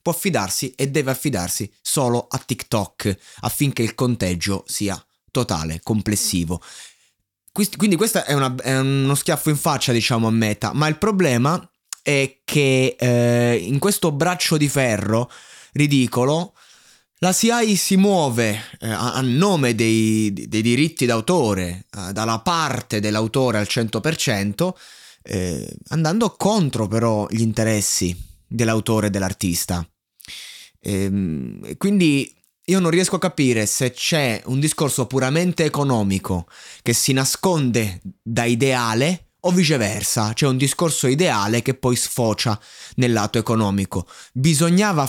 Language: Italian